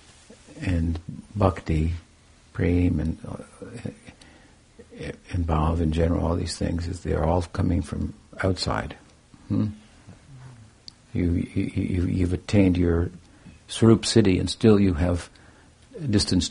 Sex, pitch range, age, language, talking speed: male, 85-105 Hz, 60-79, English, 125 wpm